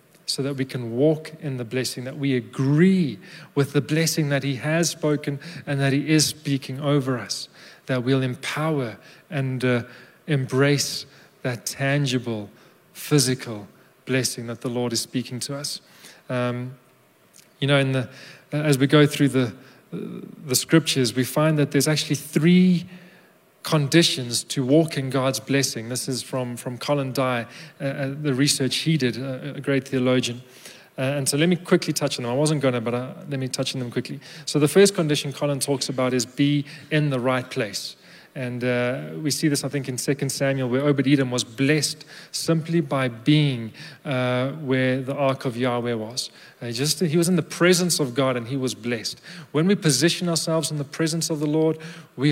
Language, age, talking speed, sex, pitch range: English, 30-49, 190 wpm, male, 130-155 Hz